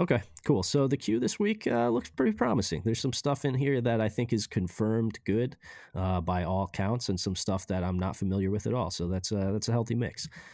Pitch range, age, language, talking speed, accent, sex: 90-120 Hz, 20-39, English, 240 wpm, American, male